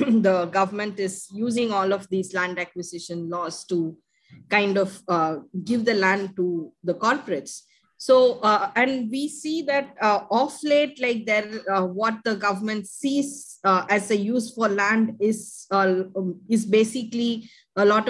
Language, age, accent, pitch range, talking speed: English, 20-39, Indian, 195-250 Hz, 160 wpm